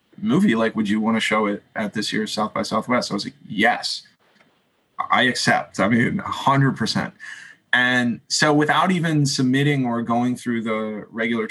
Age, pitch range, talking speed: 20-39, 115-145 Hz, 185 wpm